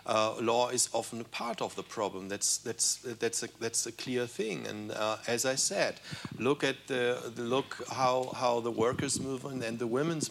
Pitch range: 115-145 Hz